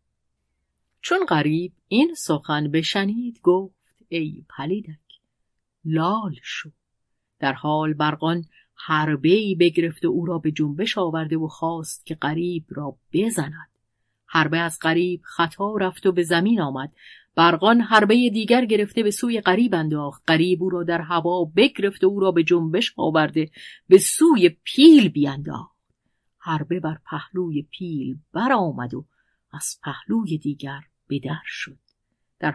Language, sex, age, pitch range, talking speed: Persian, female, 30-49, 155-195 Hz, 135 wpm